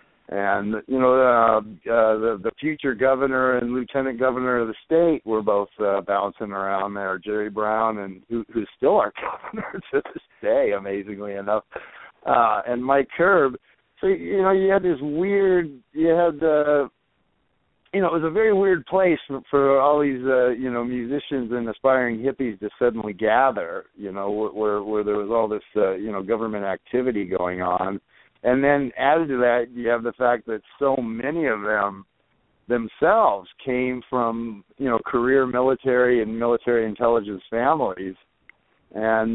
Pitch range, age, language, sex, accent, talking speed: 105-140 Hz, 60-79, English, male, American, 170 wpm